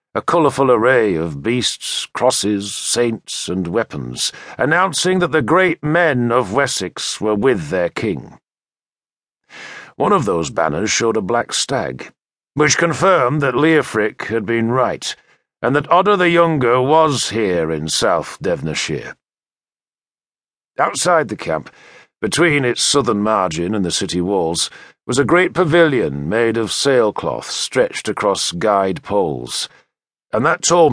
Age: 50-69